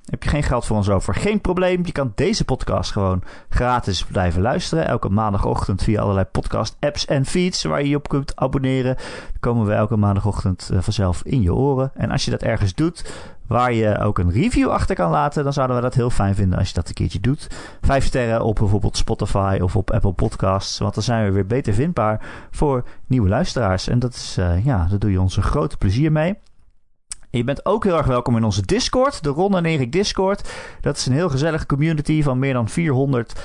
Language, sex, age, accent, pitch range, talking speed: Dutch, male, 30-49, Dutch, 100-140 Hz, 215 wpm